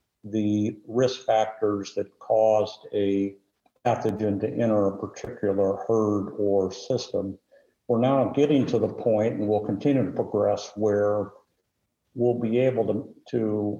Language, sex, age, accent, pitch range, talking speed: English, male, 60-79, American, 105-120 Hz, 135 wpm